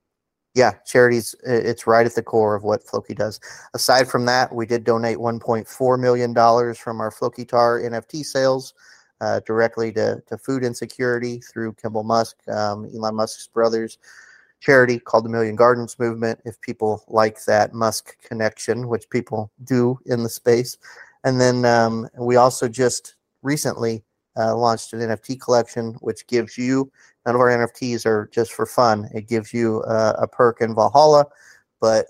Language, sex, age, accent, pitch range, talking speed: English, male, 30-49, American, 110-125 Hz, 165 wpm